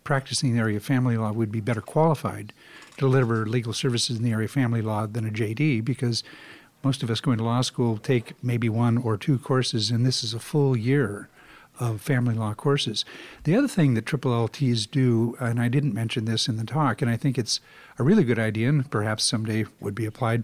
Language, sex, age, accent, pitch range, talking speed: English, male, 50-69, American, 115-140 Hz, 225 wpm